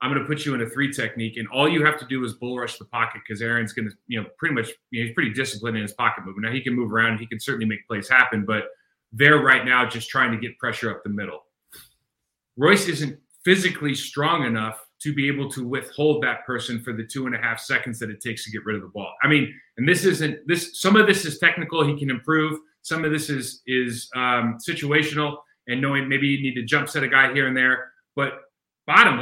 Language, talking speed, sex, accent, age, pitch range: English, 255 wpm, male, American, 30-49, 120-150 Hz